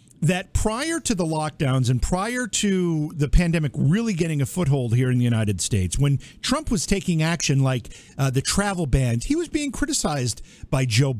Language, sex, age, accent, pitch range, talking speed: English, male, 50-69, American, 130-175 Hz, 190 wpm